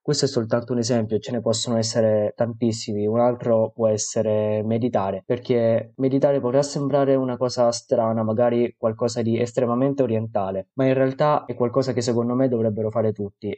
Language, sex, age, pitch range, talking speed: Italian, male, 20-39, 110-130 Hz, 170 wpm